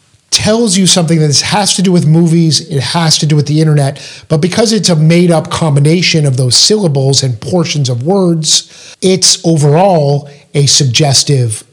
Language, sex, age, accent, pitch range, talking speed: English, male, 50-69, American, 135-170 Hz, 175 wpm